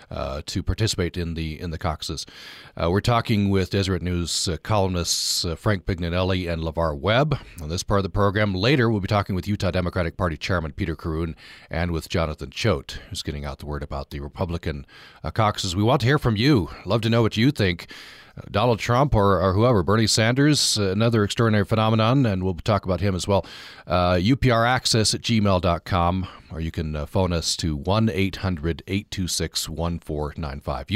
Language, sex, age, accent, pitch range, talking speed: English, male, 40-59, American, 80-105 Hz, 180 wpm